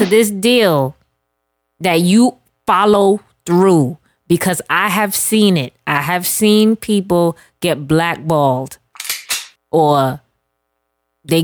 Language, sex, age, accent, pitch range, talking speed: English, female, 20-39, American, 150-210 Hz, 100 wpm